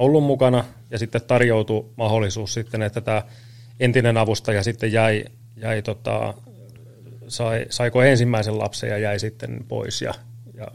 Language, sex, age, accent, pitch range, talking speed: Finnish, male, 30-49, native, 110-120 Hz, 140 wpm